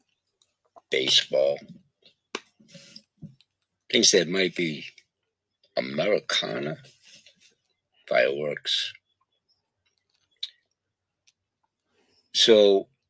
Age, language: 60-79, English